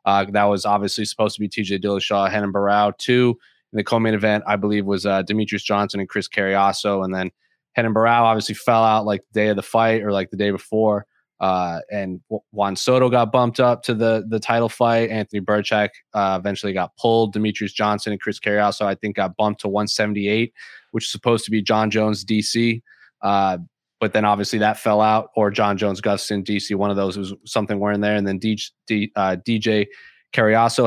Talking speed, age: 205 wpm, 20-39